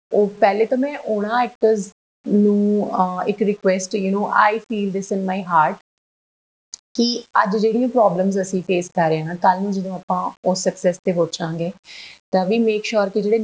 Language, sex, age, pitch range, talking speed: Punjabi, female, 30-49, 170-220 Hz, 185 wpm